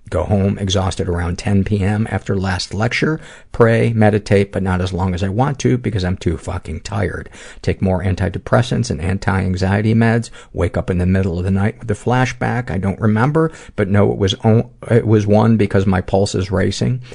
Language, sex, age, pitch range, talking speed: English, male, 50-69, 90-110 Hz, 190 wpm